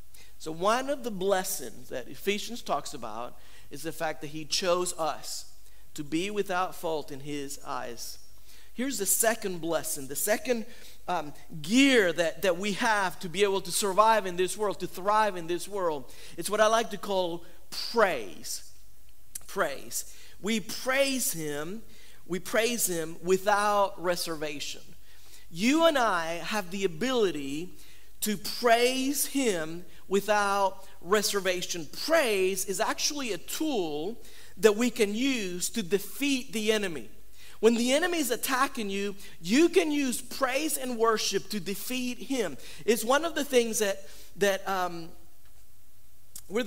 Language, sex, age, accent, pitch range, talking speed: English, male, 50-69, American, 170-240 Hz, 145 wpm